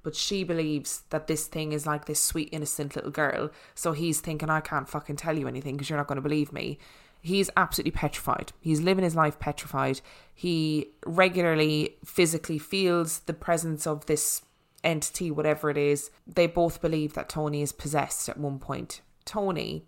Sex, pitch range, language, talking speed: female, 150-180 Hz, English, 180 wpm